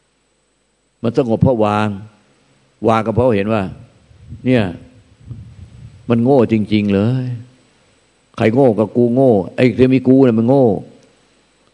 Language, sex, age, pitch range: Thai, male, 50-69, 110-135 Hz